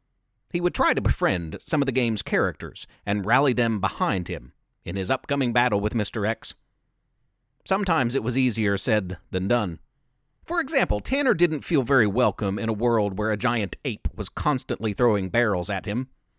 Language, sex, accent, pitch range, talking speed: English, male, American, 105-140 Hz, 180 wpm